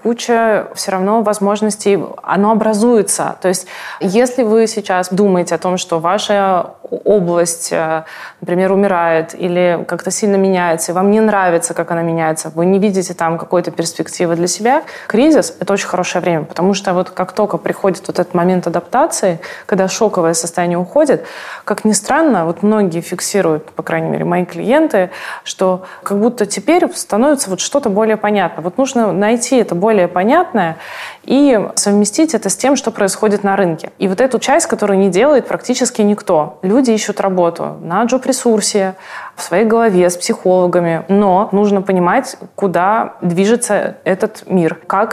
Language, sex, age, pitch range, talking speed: Russian, female, 20-39, 175-215 Hz, 160 wpm